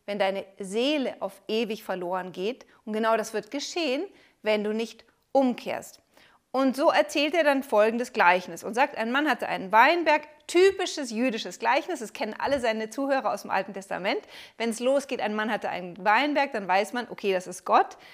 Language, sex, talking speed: German, female, 190 wpm